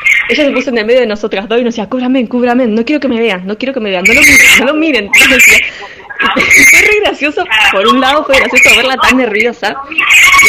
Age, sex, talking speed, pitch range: 20-39, female, 245 wpm, 205-265 Hz